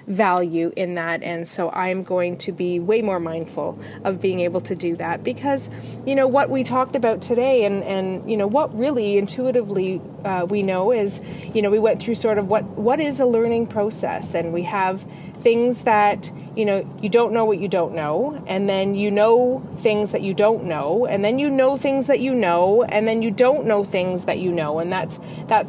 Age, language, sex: 30-49, English, female